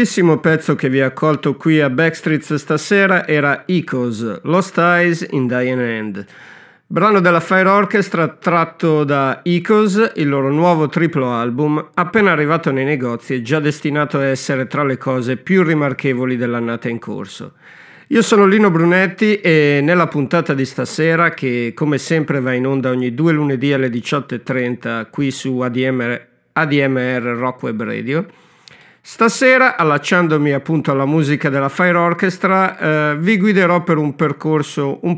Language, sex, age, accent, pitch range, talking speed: Italian, male, 50-69, native, 135-175 Hz, 150 wpm